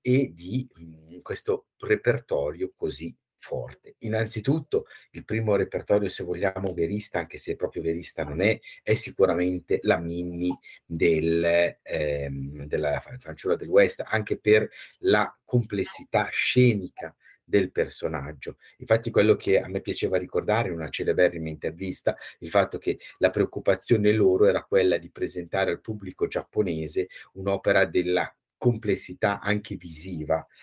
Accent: native